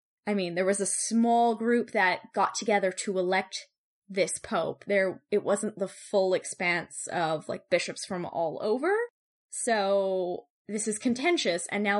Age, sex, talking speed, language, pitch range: 10-29, female, 160 wpm, English, 195-245 Hz